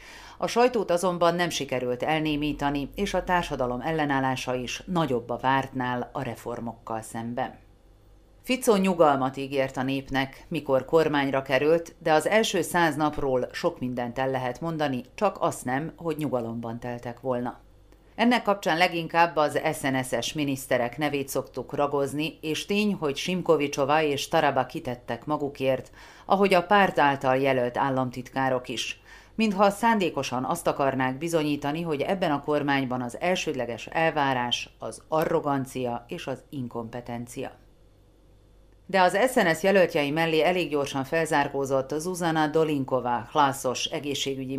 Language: Hungarian